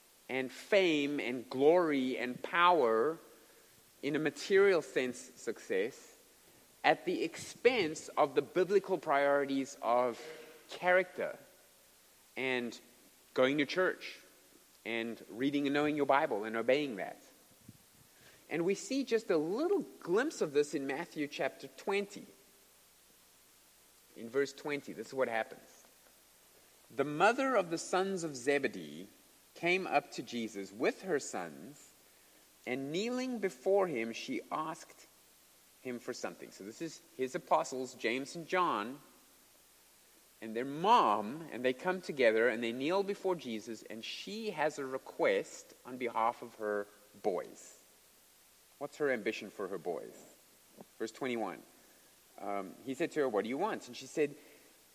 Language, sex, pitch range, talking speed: English, male, 120-190 Hz, 140 wpm